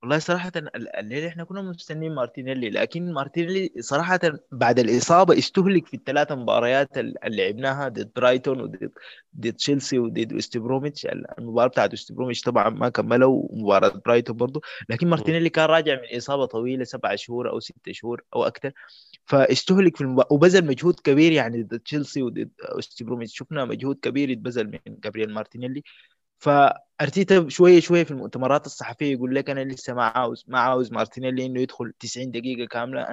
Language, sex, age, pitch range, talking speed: Arabic, male, 20-39, 120-155 Hz, 155 wpm